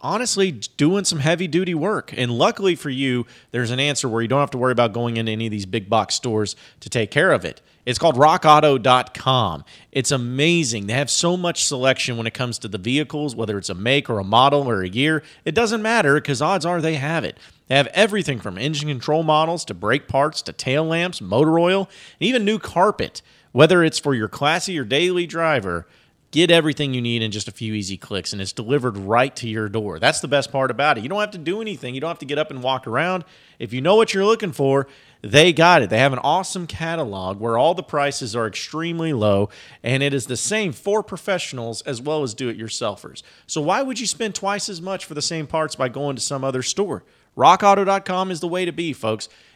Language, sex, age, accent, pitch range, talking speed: English, male, 40-59, American, 120-170 Hz, 230 wpm